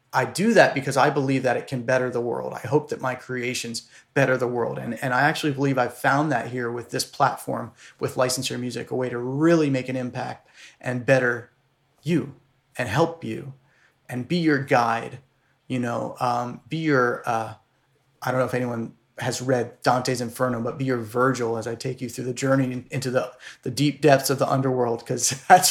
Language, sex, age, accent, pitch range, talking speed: English, male, 30-49, American, 125-145 Hz, 205 wpm